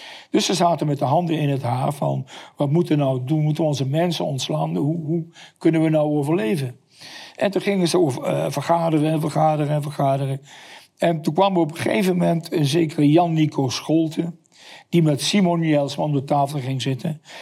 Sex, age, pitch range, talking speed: male, 60-79, 145-165 Hz, 195 wpm